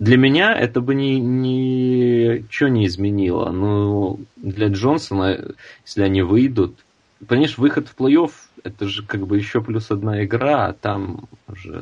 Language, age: Russian, 30-49